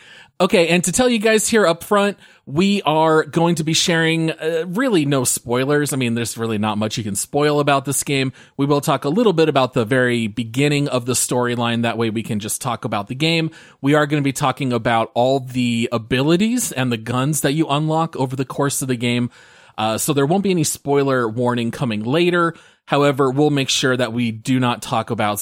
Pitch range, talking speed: 120-160 Hz, 225 wpm